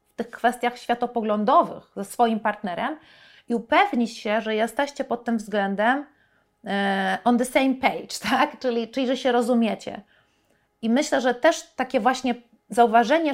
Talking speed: 145 wpm